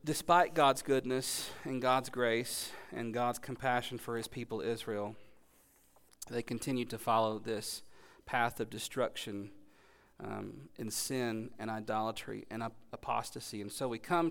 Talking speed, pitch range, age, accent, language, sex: 135 wpm, 115-150 Hz, 40-59, American, English, male